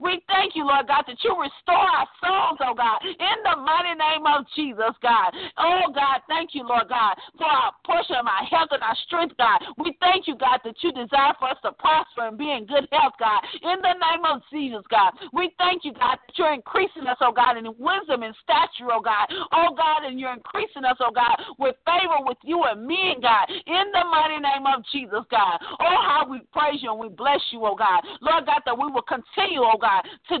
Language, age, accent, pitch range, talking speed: English, 50-69, American, 230-335 Hz, 230 wpm